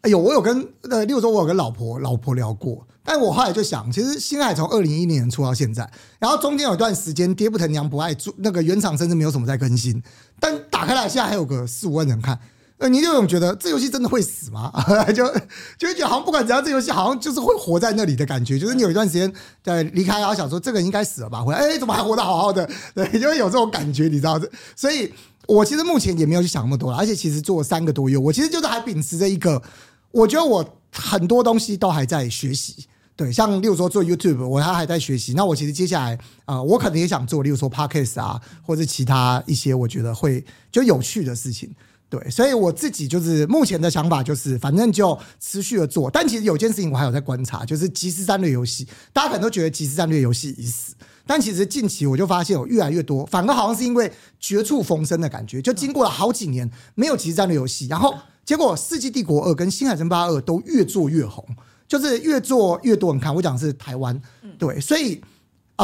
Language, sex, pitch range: Chinese, male, 135-220 Hz